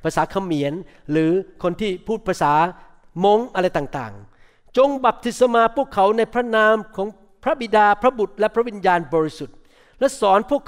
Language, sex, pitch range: Thai, male, 160-215 Hz